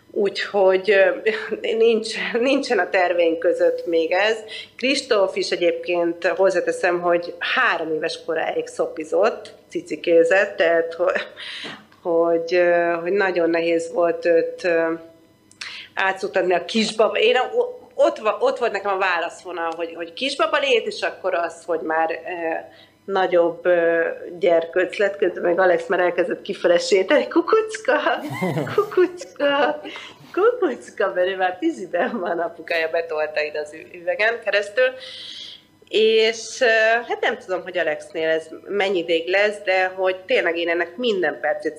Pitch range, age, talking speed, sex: 165-240 Hz, 30-49, 120 wpm, female